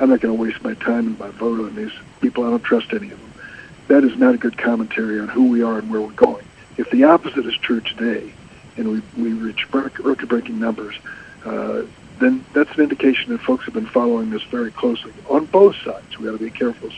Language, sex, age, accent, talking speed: English, male, 60-79, American, 235 wpm